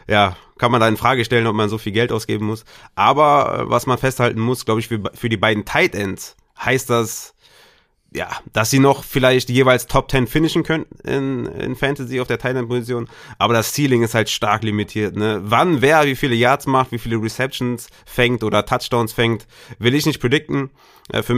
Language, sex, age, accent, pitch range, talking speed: German, male, 30-49, German, 100-120 Hz, 200 wpm